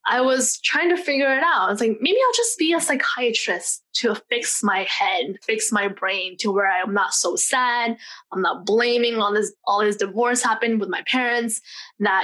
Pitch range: 205-255 Hz